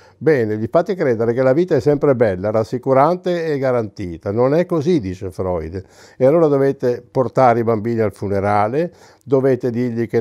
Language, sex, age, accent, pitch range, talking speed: Italian, male, 60-79, native, 105-135 Hz, 170 wpm